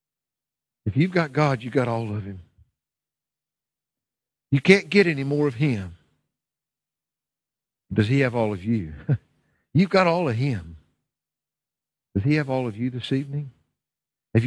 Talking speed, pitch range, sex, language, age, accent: 150 wpm, 120-165 Hz, male, English, 60-79, American